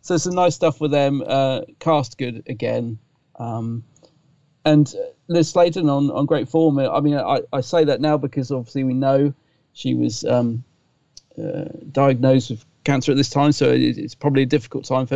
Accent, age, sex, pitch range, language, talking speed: British, 40-59, male, 130-165 Hz, English, 185 wpm